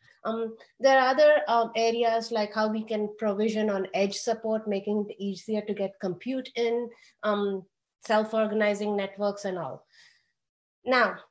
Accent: Indian